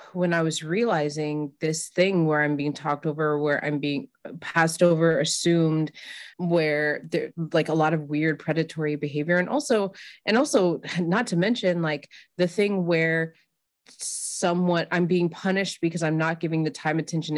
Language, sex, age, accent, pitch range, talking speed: English, female, 20-39, American, 155-180 Hz, 165 wpm